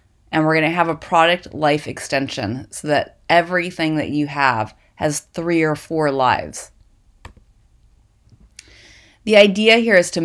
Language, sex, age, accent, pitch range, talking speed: English, female, 30-49, American, 150-180 Hz, 140 wpm